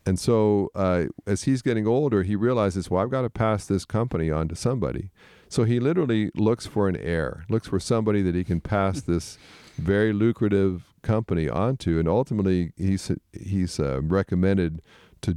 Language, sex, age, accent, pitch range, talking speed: English, male, 50-69, American, 85-110 Hz, 175 wpm